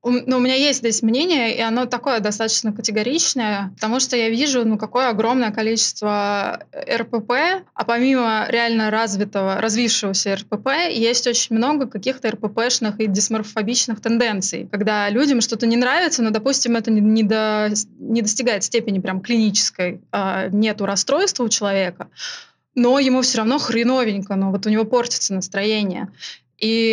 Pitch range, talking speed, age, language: 205-240 Hz, 155 wpm, 20-39, Russian